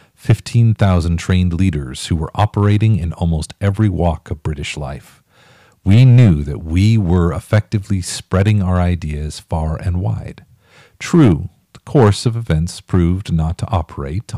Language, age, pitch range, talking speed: English, 50-69, 80-110 Hz, 140 wpm